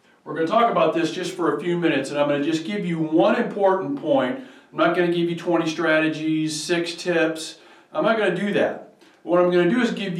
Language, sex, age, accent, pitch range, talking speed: English, male, 40-59, American, 150-185 Hz, 230 wpm